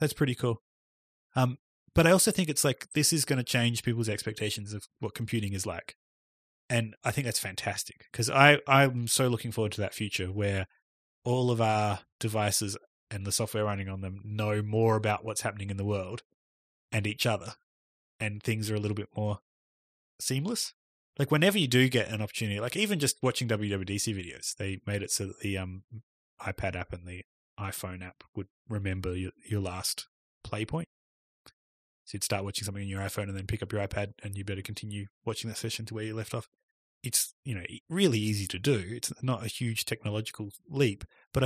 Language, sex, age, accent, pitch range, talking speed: English, male, 20-39, Australian, 100-120 Hz, 200 wpm